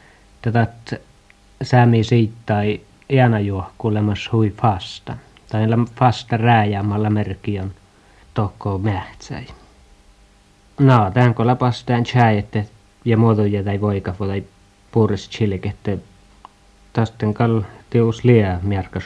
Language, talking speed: Finnish, 80 wpm